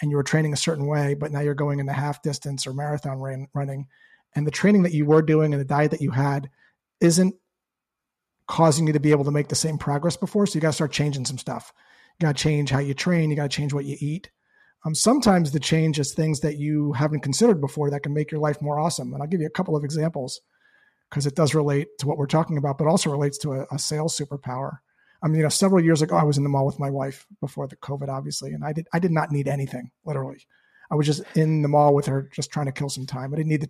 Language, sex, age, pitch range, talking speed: English, male, 40-59, 140-160 Hz, 275 wpm